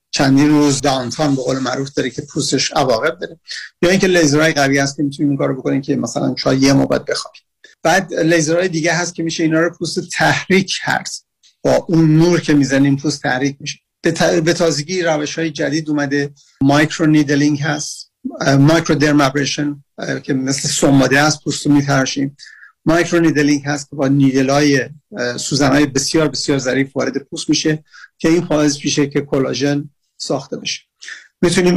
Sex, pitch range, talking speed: male, 140-160 Hz, 155 wpm